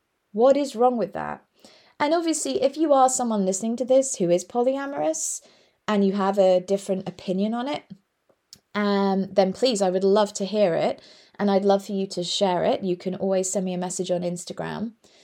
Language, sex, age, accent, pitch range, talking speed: English, female, 20-39, British, 185-225 Hz, 200 wpm